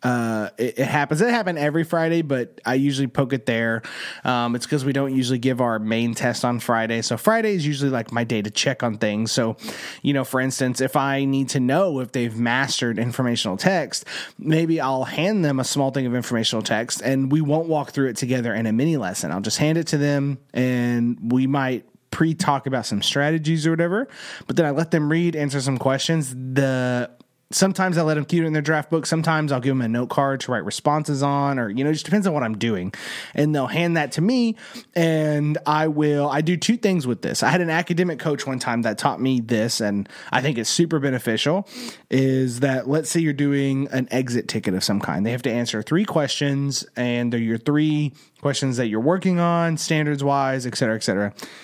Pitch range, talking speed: 120-155 Hz, 225 wpm